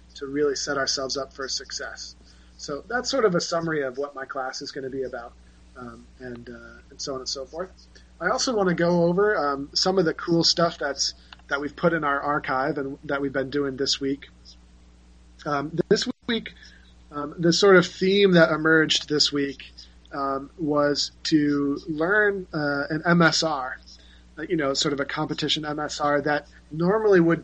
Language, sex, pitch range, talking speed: English, male, 135-160 Hz, 190 wpm